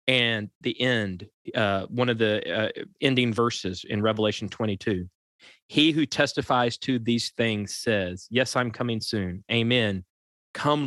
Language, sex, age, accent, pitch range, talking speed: English, male, 30-49, American, 100-125 Hz, 145 wpm